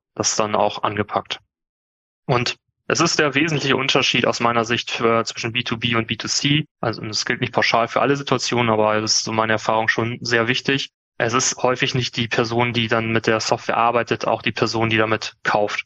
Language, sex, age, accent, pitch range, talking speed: English, male, 20-39, German, 110-125 Hz, 200 wpm